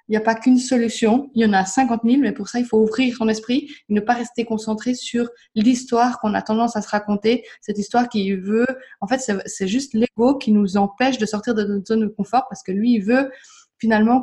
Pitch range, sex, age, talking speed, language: 205-245 Hz, female, 20-39, 245 wpm, French